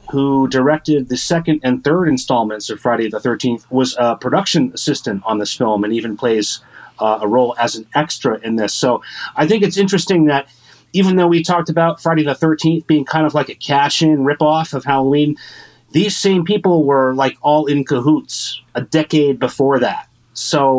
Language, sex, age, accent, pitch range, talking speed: English, male, 30-49, American, 125-155 Hz, 195 wpm